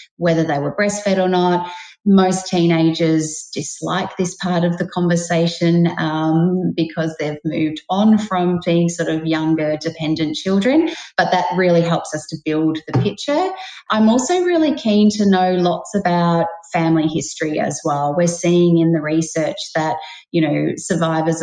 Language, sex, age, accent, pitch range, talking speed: English, female, 30-49, Australian, 150-180 Hz, 155 wpm